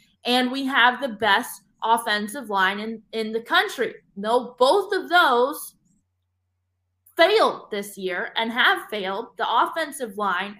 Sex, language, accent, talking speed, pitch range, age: female, English, American, 135 wpm, 205-260 Hz, 20-39